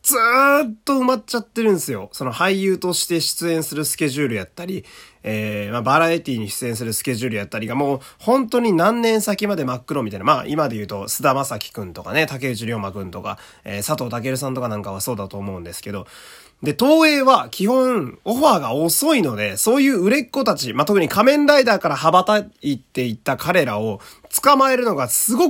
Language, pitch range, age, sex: Japanese, 125-205 Hz, 20-39, male